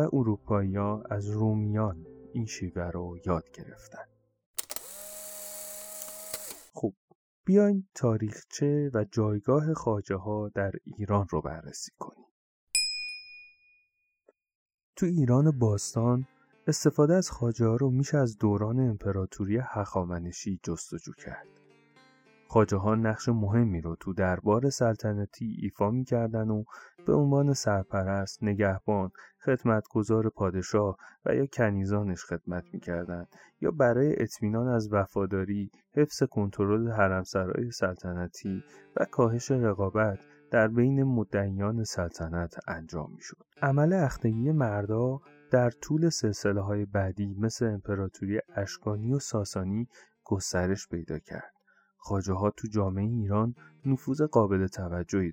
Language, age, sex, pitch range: Persian, 30-49, male, 100-130 Hz